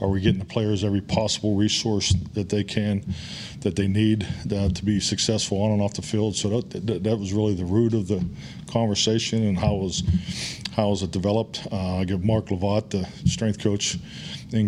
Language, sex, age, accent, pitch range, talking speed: English, male, 40-59, American, 95-110 Hz, 205 wpm